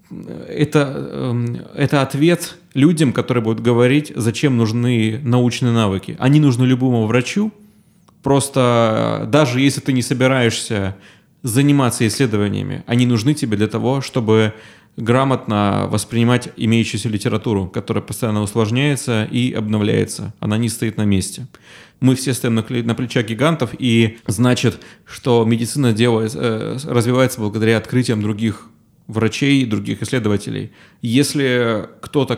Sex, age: male, 30-49